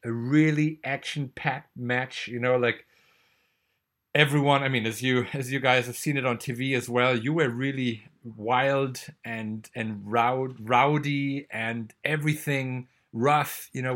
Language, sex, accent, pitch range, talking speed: English, male, German, 110-135 Hz, 145 wpm